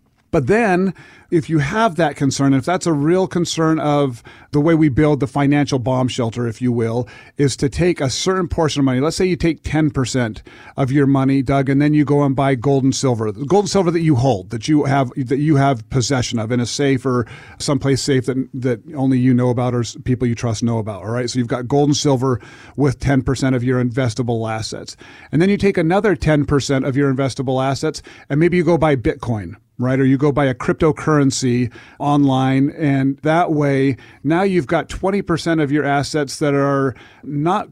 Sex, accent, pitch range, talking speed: male, American, 130-155 Hz, 210 wpm